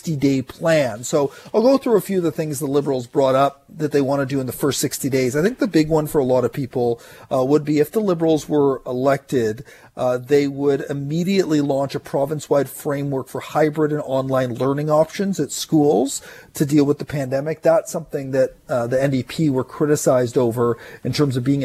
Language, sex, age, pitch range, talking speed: English, male, 40-59, 135-170 Hz, 215 wpm